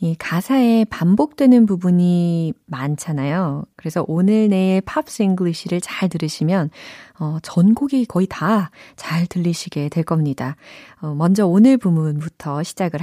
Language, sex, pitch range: Korean, female, 160-220 Hz